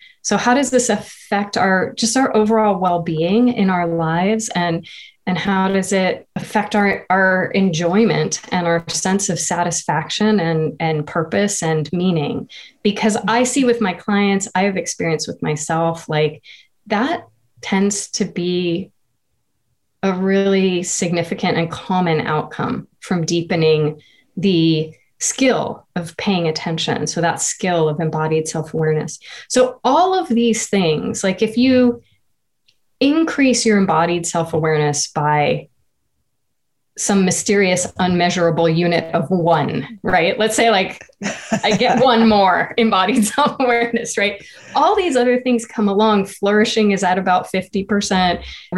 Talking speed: 135 wpm